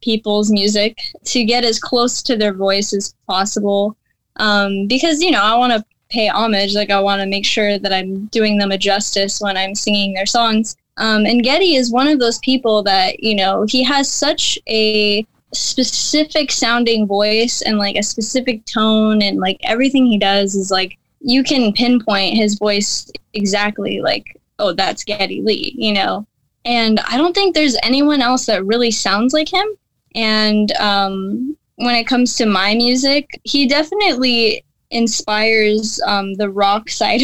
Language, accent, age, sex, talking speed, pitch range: English, American, 10-29, female, 170 wpm, 205-245 Hz